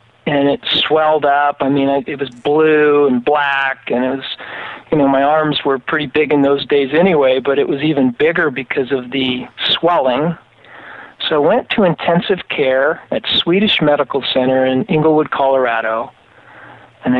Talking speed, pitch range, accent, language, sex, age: 170 wpm, 130-155 Hz, American, English, male, 50-69